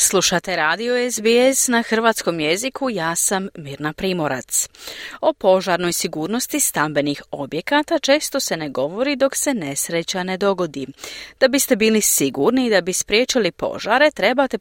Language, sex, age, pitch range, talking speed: Croatian, female, 40-59, 165-250 Hz, 140 wpm